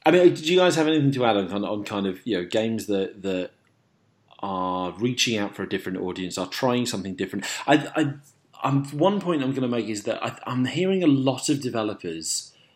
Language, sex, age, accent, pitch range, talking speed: English, male, 30-49, British, 100-135 Hz, 225 wpm